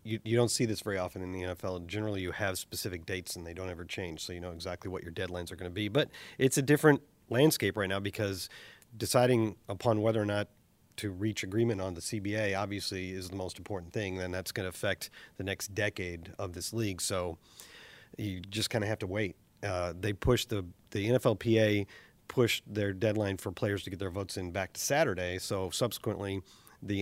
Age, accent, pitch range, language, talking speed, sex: 40-59, American, 95-115 Hz, English, 220 wpm, male